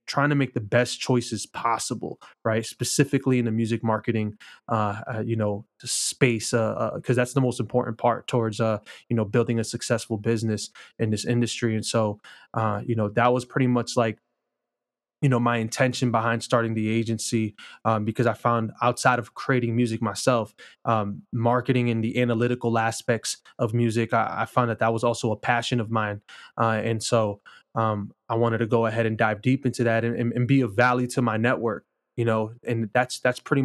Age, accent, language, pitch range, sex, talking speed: 20-39, American, English, 115-125 Hz, male, 200 wpm